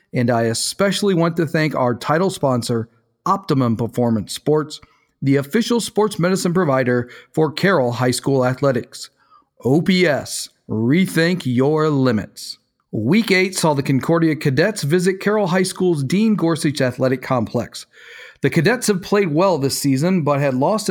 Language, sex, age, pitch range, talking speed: English, male, 40-59, 130-175 Hz, 145 wpm